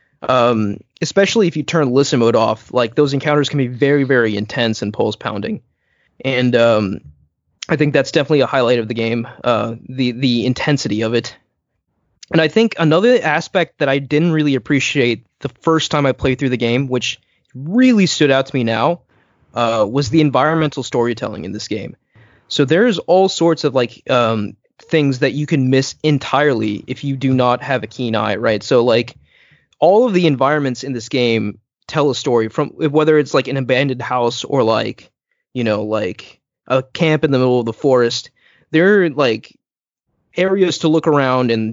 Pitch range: 120-150 Hz